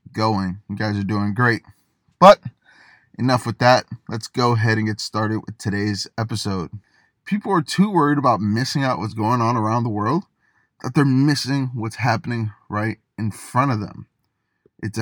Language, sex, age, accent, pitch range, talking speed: English, male, 20-39, American, 110-145 Hz, 170 wpm